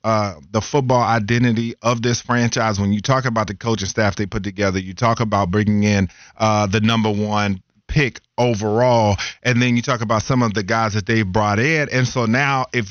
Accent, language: American, English